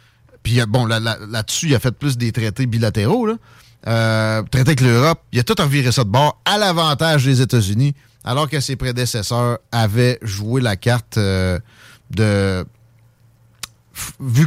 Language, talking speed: French, 160 wpm